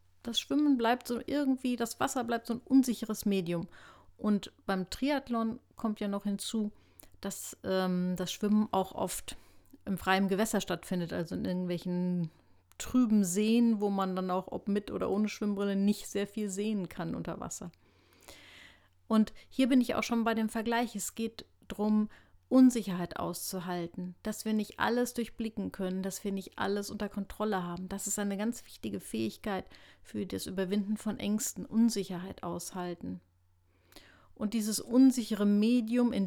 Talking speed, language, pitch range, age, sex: 155 wpm, German, 180-220 Hz, 30-49, female